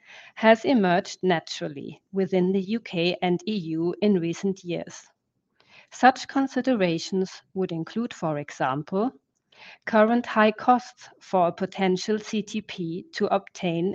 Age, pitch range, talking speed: 40-59, 175-215 Hz, 110 wpm